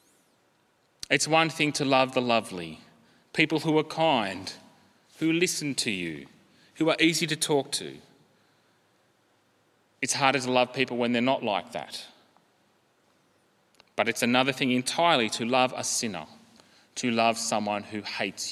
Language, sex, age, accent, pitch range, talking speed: English, male, 30-49, Australian, 115-150 Hz, 145 wpm